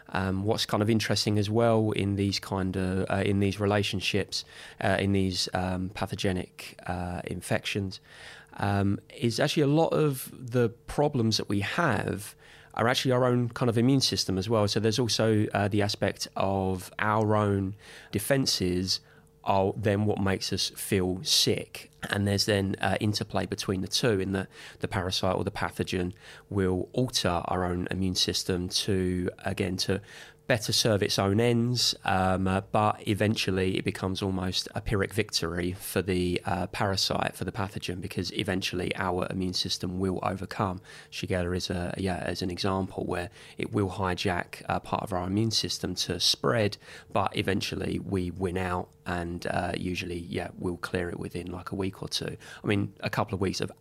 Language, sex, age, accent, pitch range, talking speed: English, male, 20-39, British, 90-105 Hz, 175 wpm